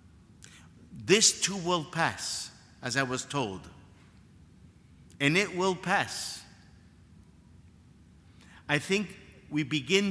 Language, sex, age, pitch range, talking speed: English, male, 50-69, 115-170 Hz, 95 wpm